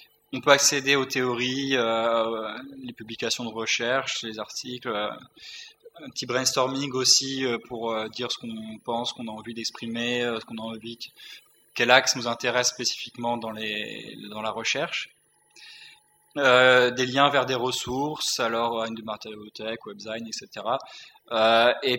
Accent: French